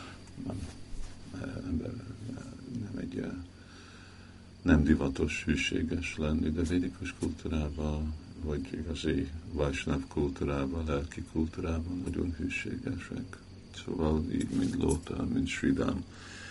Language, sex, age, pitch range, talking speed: Hungarian, male, 50-69, 80-95 Hz, 85 wpm